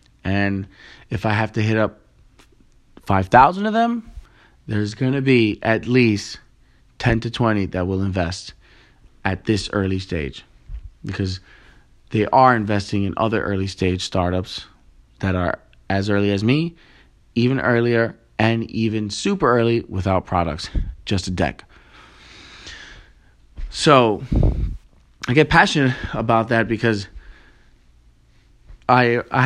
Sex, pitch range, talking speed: male, 95-120 Hz, 125 wpm